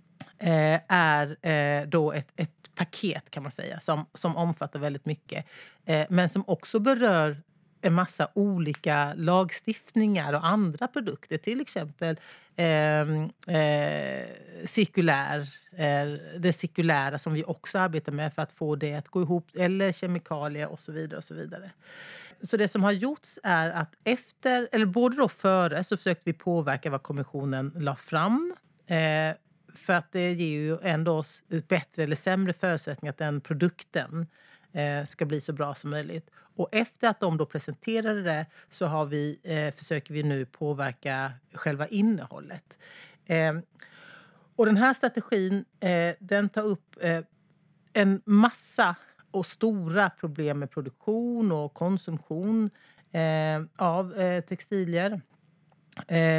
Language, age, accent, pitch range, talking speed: Swedish, 30-49, native, 155-190 Hz, 145 wpm